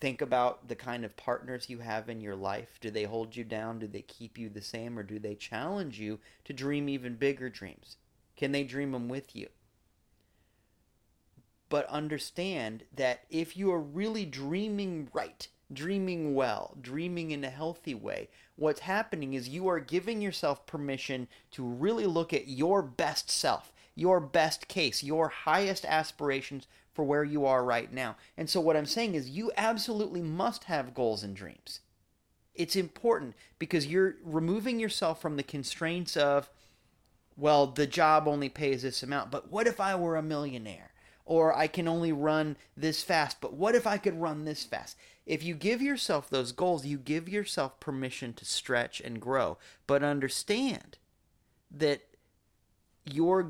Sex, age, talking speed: male, 30-49, 170 wpm